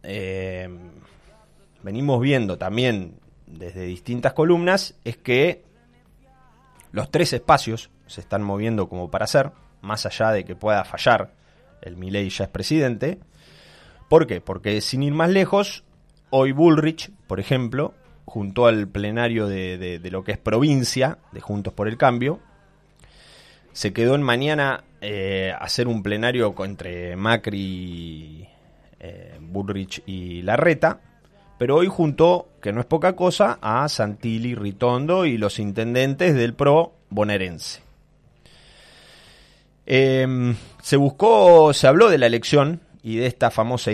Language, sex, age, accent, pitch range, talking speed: Spanish, male, 20-39, Argentinian, 100-145 Hz, 135 wpm